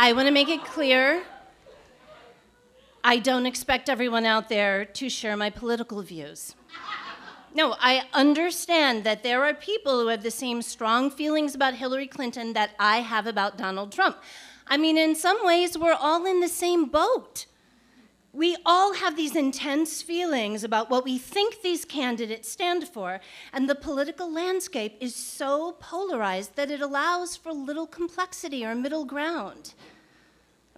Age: 40-59